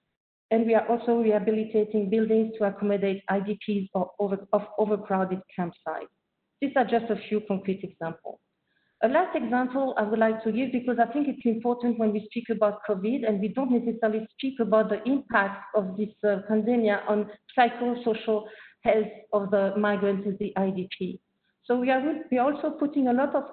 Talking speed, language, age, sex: 170 wpm, English, 50-69, female